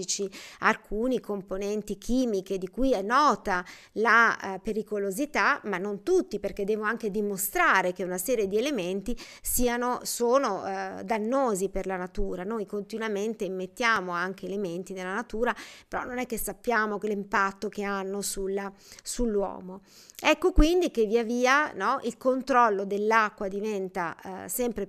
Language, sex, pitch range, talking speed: Italian, female, 195-245 Hz, 125 wpm